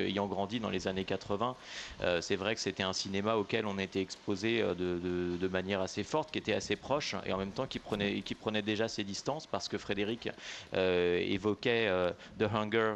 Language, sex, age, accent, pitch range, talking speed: French, male, 30-49, French, 95-110 Hz, 215 wpm